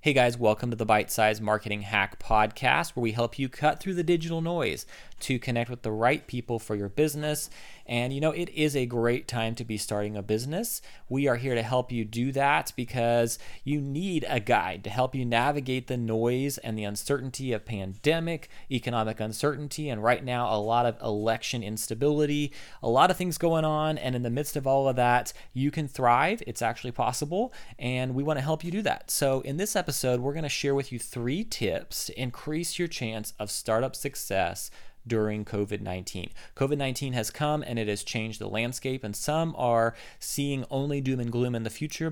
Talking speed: 205 wpm